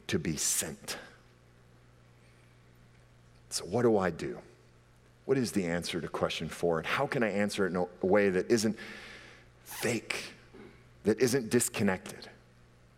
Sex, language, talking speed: male, English, 140 wpm